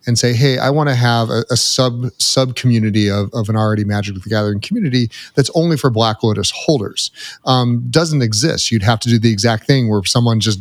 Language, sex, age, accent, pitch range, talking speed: English, male, 30-49, American, 110-135 Hz, 220 wpm